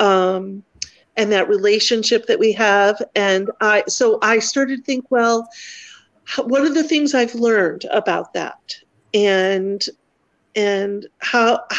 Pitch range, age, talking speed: 195-255 Hz, 40-59, 130 wpm